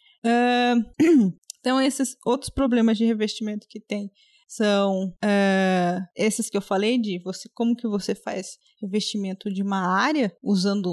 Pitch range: 205-245 Hz